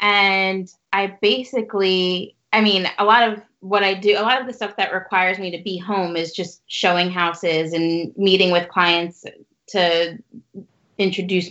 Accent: American